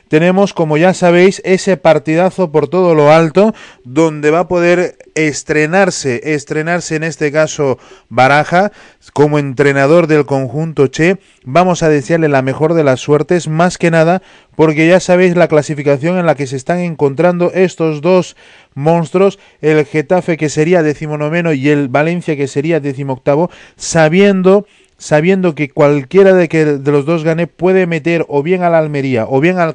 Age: 30-49